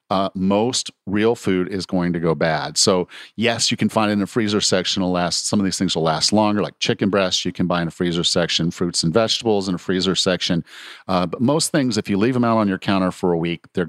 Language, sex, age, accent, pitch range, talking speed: English, male, 50-69, American, 95-115 Hz, 265 wpm